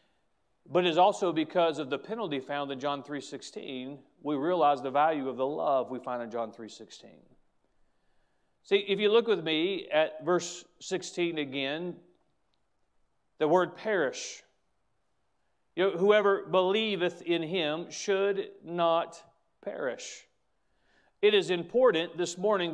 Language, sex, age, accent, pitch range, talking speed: English, male, 40-59, American, 165-200 Hz, 135 wpm